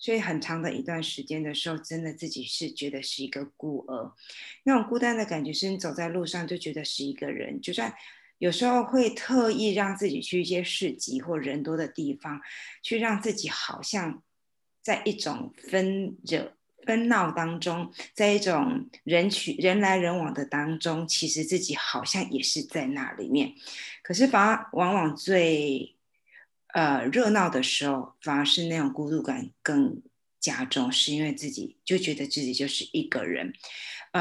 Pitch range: 150-220 Hz